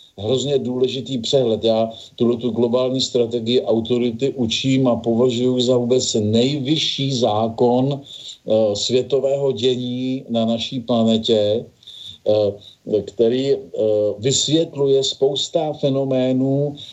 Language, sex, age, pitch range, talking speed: Slovak, male, 50-69, 110-130 Hz, 90 wpm